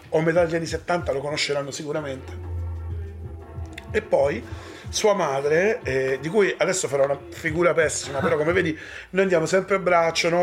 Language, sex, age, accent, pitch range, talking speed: Italian, male, 40-59, native, 140-180 Hz, 160 wpm